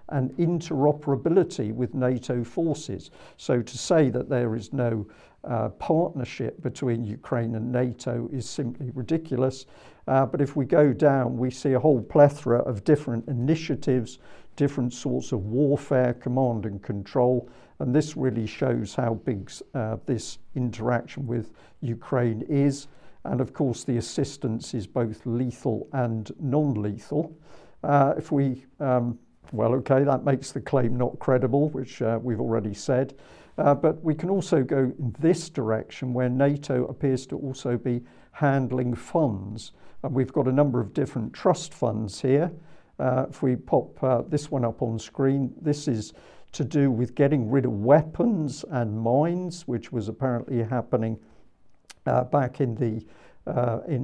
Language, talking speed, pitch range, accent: English, 155 wpm, 120-140 Hz, British